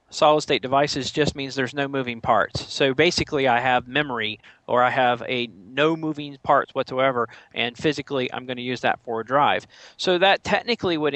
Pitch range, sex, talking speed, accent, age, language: 125-150 Hz, male, 190 wpm, American, 40-59, English